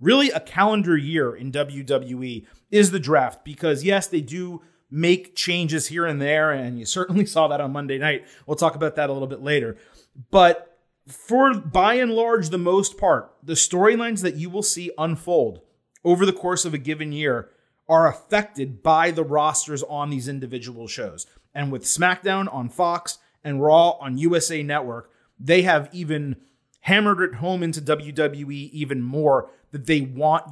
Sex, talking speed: male, 175 wpm